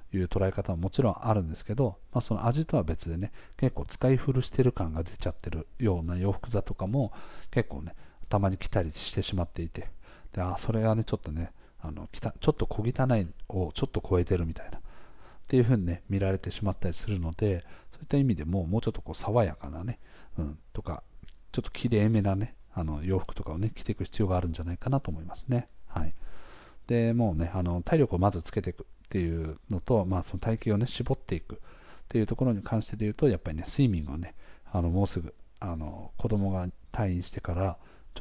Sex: male